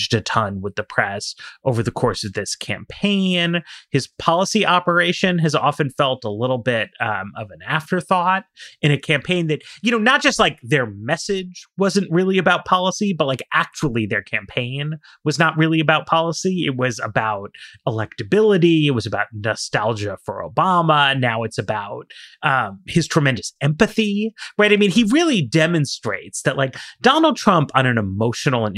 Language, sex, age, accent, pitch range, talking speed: English, male, 30-49, American, 130-195 Hz, 165 wpm